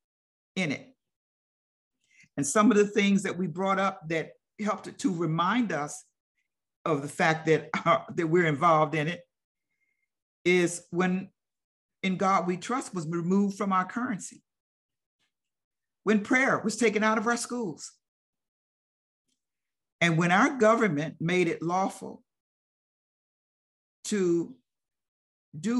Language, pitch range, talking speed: English, 160-215 Hz, 125 wpm